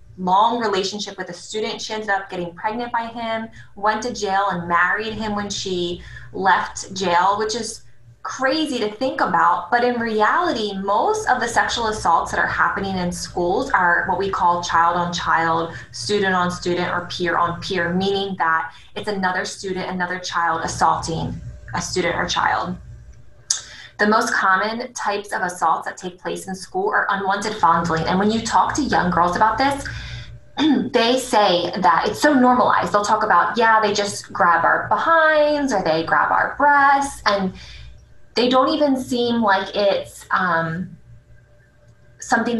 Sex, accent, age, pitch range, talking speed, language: female, American, 20-39, 175-220 Hz, 170 wpm, English